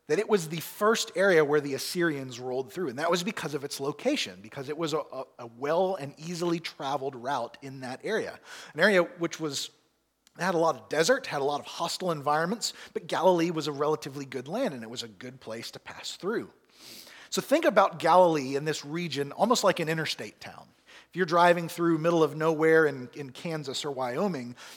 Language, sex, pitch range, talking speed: English, male, 140-180 Hz, 210 wpm